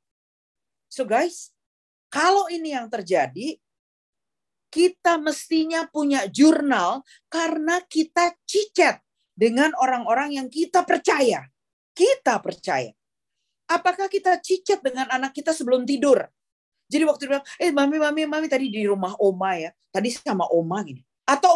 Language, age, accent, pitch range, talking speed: Indonesian, 40-59, native, 215-330 Hz, 120 wpm